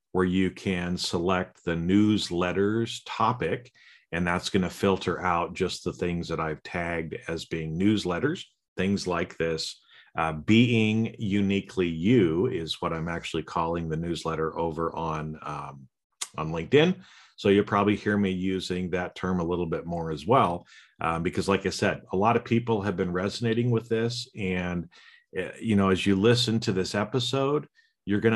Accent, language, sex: American, English, male